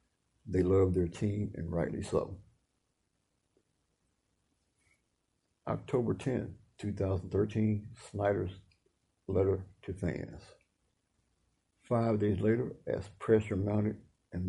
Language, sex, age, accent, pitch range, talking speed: English, male, 60-79, American, 90-105 Hz, 85 wpm